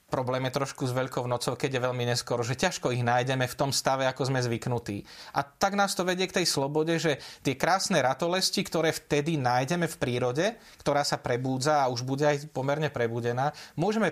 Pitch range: 120-160 Hz